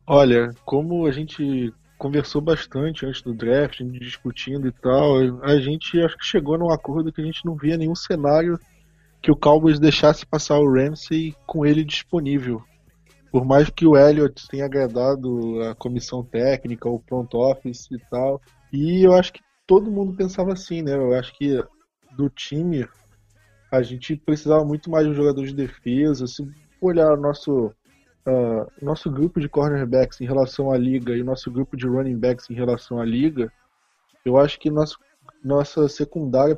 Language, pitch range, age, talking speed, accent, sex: Portuguese, 130-155 Hz, 20-39, 170 wpm, Brazilian, male